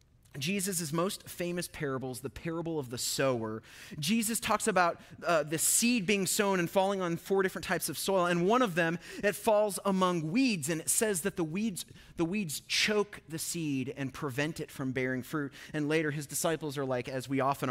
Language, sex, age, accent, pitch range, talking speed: English, male, 30-49, American, 140-190 Hz, 195 wpm